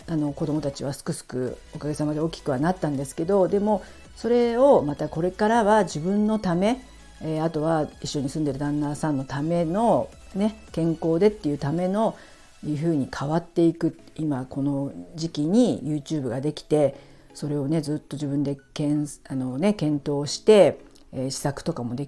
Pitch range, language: 145-180 Hz, Japanese